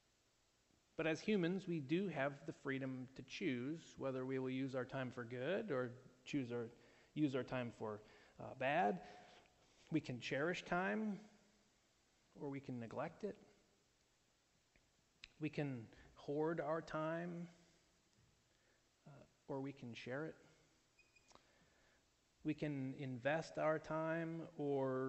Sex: male